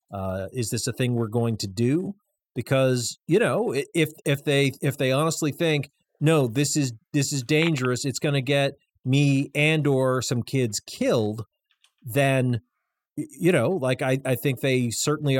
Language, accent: English, American